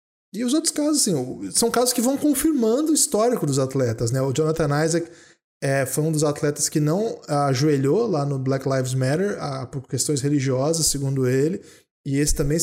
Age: 20-39